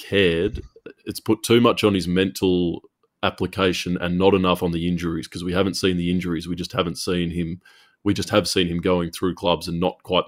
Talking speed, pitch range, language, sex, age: 215 wpm, 85-95 Hz, English, male, 20-39